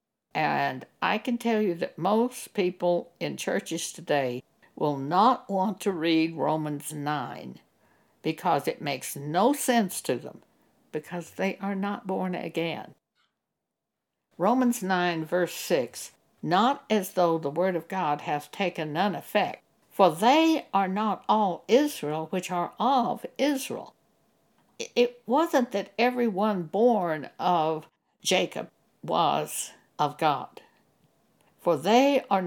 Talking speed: 130 wpm